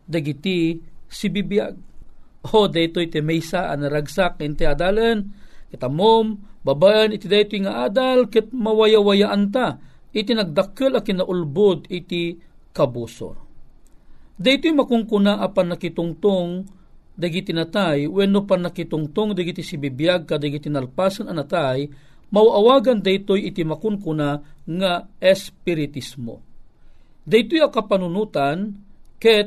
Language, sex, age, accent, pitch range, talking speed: Filipino, male, 50-69, native, 150-205 Hz, 115 wpm